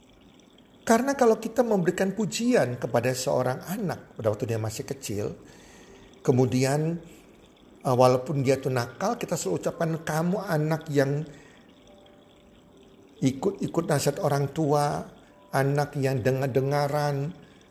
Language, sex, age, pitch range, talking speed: Indonesian, male, 50-69, 135-195 Hz, 105 wpm